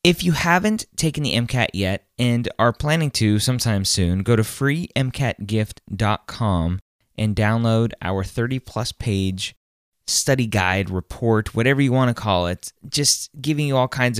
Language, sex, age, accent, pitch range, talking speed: English, male, 20-39, American, 95-130 Hz, 150 wpm